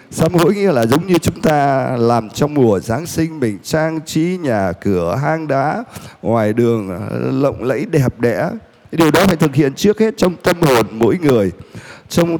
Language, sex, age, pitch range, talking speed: Vietnamese, male, 20-39, 115-180 Hz, 190 wpm